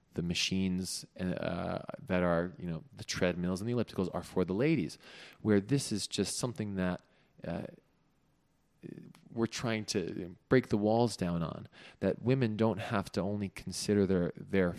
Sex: male